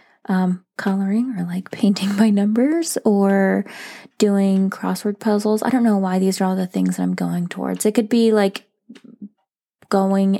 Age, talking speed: 20-39, 165 wpm